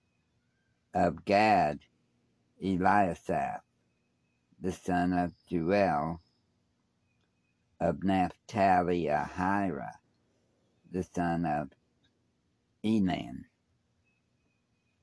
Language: English